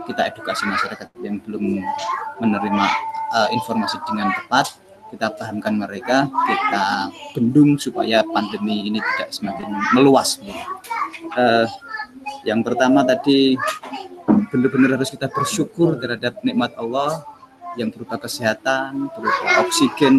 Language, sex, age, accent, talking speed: Indonesian, male, 20-39, native, 110 wpm